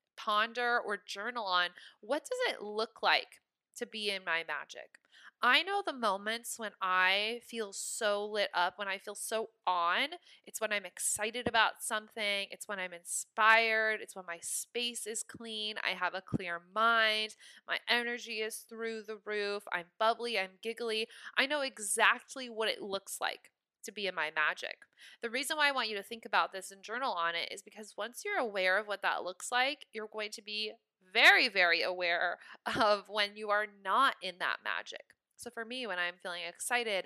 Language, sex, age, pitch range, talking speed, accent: English, female, 20-39, 195-230 Hz, 190 wpm, American